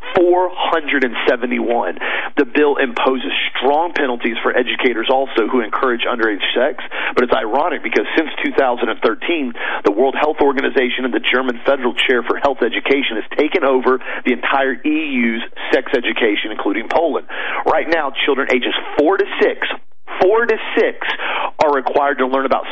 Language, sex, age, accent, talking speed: English, male, 40-59, American, 150 wpm